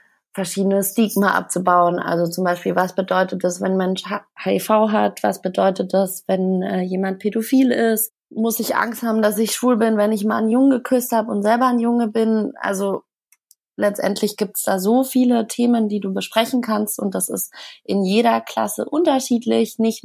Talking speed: 185 wpm